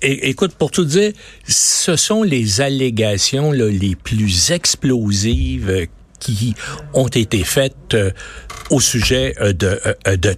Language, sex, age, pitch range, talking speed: French, male, 60-79, 105-145 Hz, 110 wpm